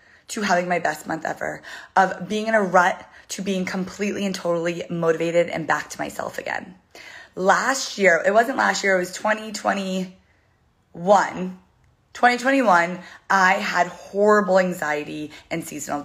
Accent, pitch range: American, 175-215 Hz